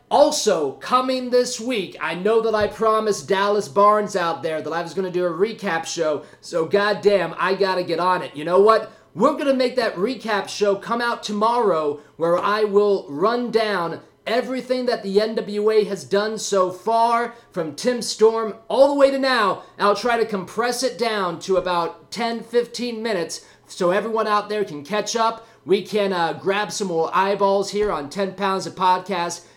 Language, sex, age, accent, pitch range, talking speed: English, male, 30-49, American, 170-220 Hz, 195 wpm